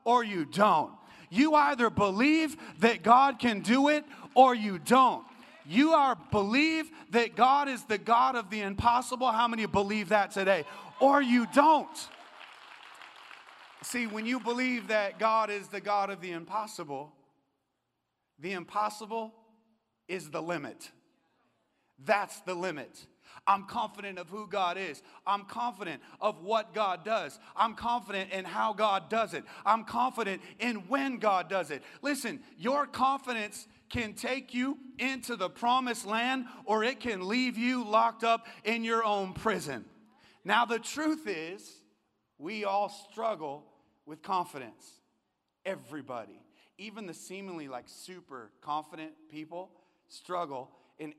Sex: male